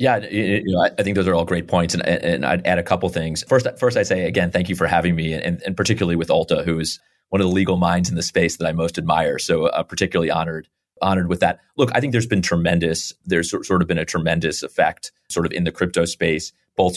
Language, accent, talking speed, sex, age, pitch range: English, American, 260 wpm, male, 30-49, 85-95 Hz